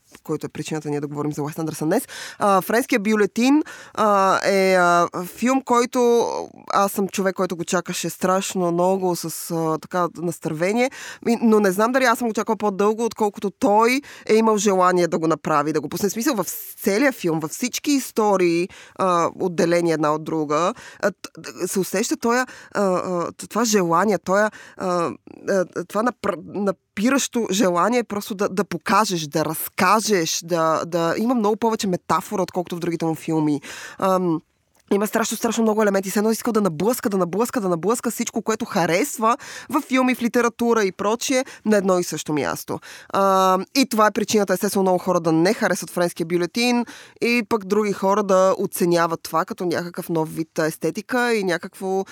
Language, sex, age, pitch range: Bulgarian, female, 20-39, 170-220 Hz